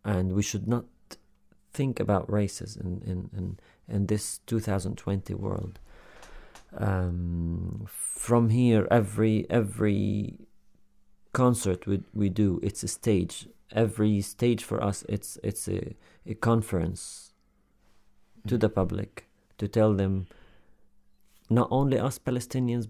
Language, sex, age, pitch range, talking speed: English, male, 40-59, 95-110 Hz, 125 wpm